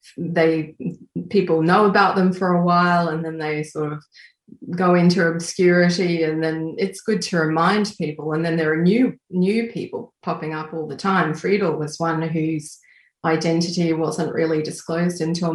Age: 30-49